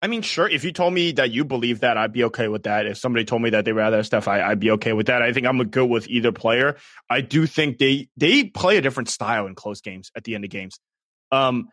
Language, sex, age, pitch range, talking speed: English, male, 20-39, 120-180 Hz, 275 wpm